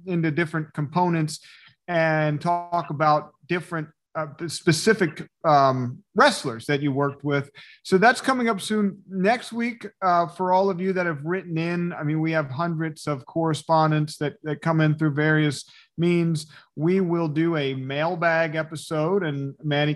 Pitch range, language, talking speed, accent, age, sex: 150-180 Hz, English, 160 wpm, American, 40-59, male